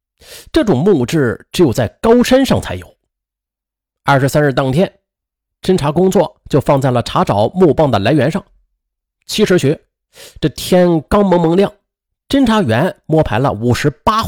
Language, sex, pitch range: Chinese, male, 140-215 Hz